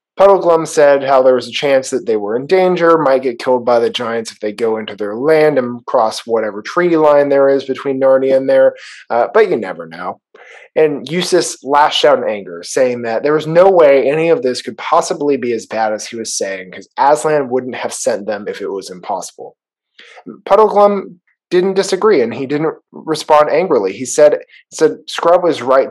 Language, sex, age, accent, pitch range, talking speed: English, male, 20-39, American, 125-185 Hz, 205 wpm